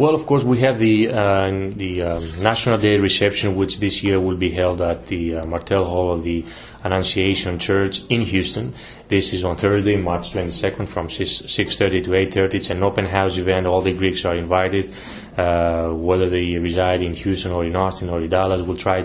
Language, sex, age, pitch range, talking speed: English, male, 20-39, 90-100 Hz, 205 wpm